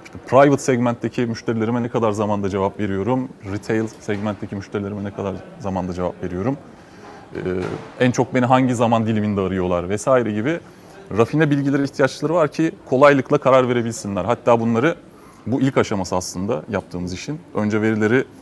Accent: Turkish